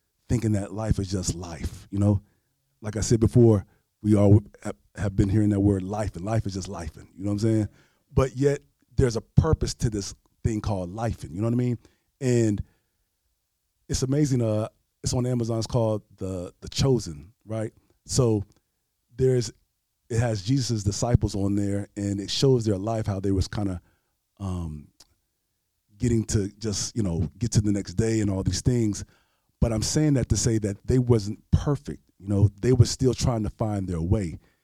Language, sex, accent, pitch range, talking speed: English, male, American, 100-120 Hz, 195 wpm